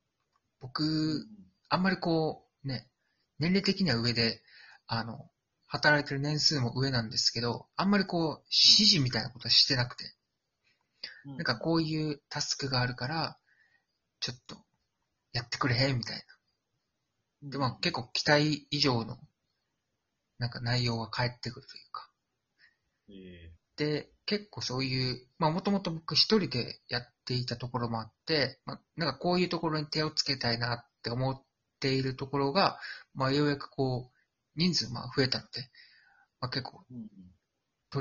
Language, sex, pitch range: Japanese, male, 120-155 Hz